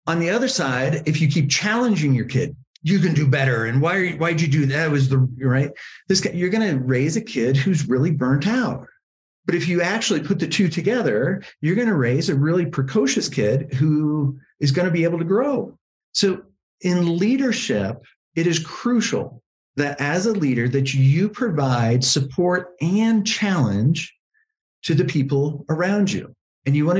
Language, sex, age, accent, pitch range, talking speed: English, male, 50-69, American, 135-195 Hz, 190 wpm